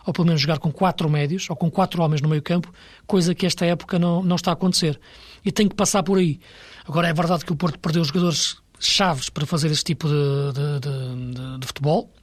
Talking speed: 240 wpm